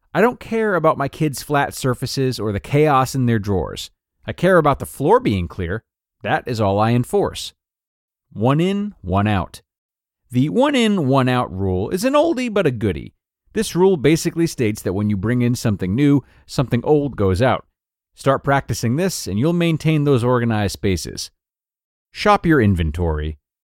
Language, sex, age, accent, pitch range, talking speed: English, male, 30-49, American, 100-165 Hz, 175 wpm